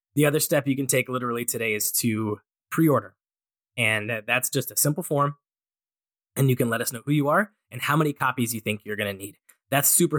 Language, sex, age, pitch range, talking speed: English, male, 20-39, 115-140 Hz, 225 wpm